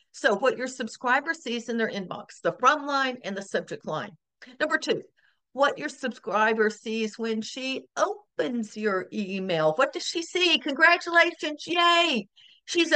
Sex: female